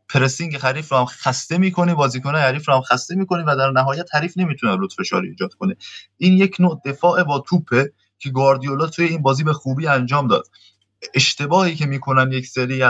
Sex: male